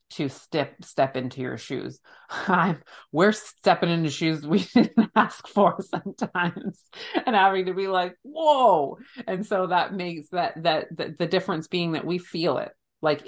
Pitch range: 140-195 Hz